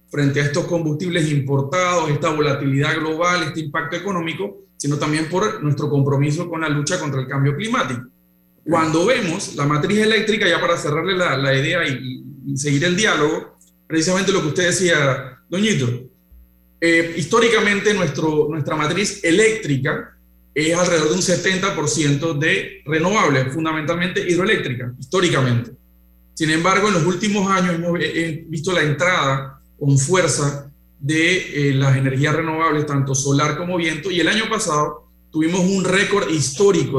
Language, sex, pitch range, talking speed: Spanish, male, 140-180 Hz, 145 wpm